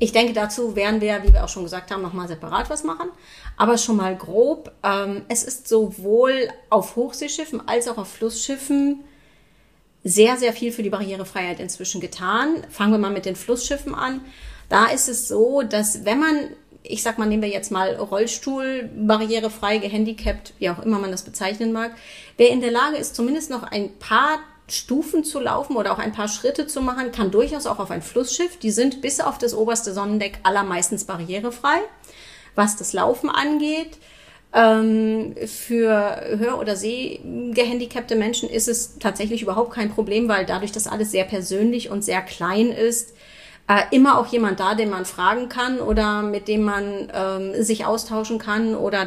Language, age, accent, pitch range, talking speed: German, 30-49, German, 205-245 Hz, 175 wpm